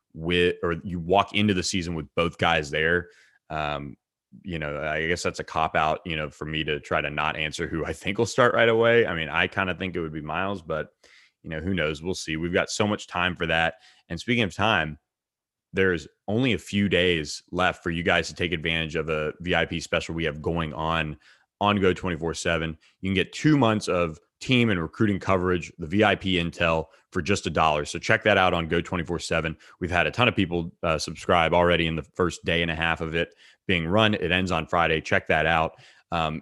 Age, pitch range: 30-49, 80-95 Hz